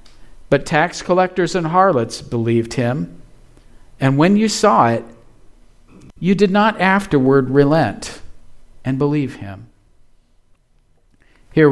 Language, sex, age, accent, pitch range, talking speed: English, male, 50-69, American, 120-160 Hz, 110 wpm